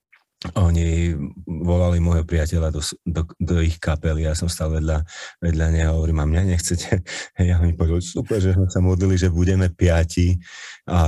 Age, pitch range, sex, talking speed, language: 30-49, 80-90 Hz, male, 170 wpm, Slovak